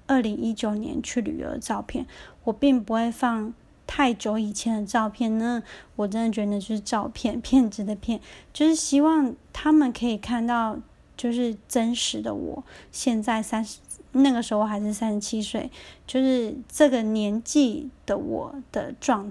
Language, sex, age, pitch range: Chinese, female, 20-39, 220-260 Hz